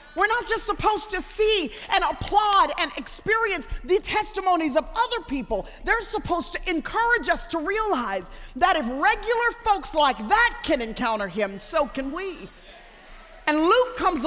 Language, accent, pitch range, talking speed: English, American, 255-355 Hz, 155 wpm